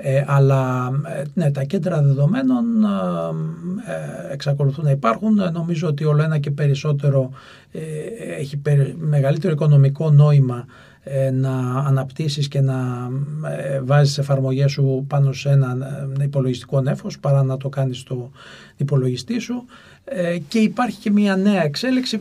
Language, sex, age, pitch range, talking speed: Greek, male, 40-59, 135-170 Hz, 115 wpm